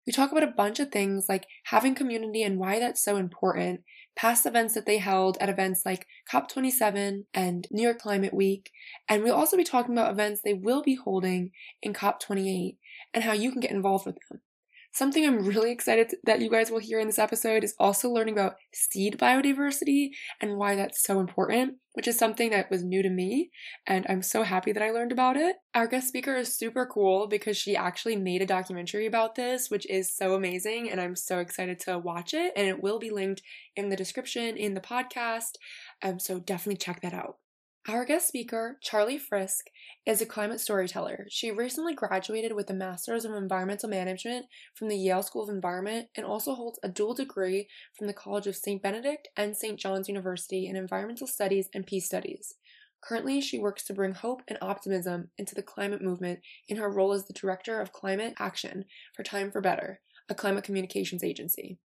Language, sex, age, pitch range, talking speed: English, female, 20-39, 190-235 Hz, 200 wpm